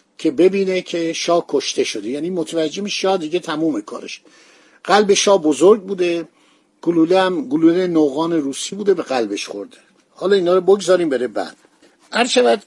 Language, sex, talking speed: Persian, male, 150 wpm